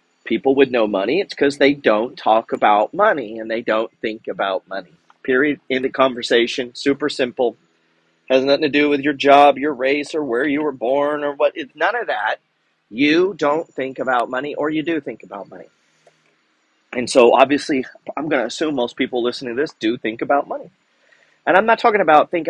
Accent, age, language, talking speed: American, 40-59, English, 200 wpm